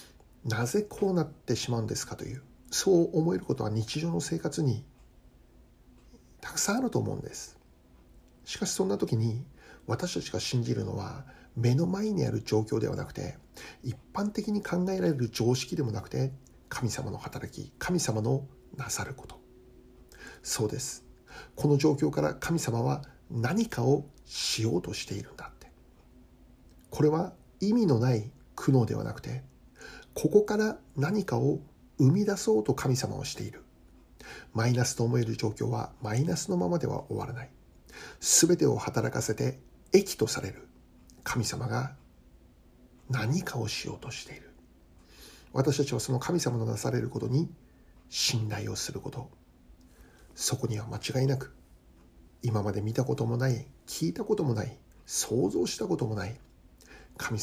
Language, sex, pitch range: Japanese, male, 110-145 Hz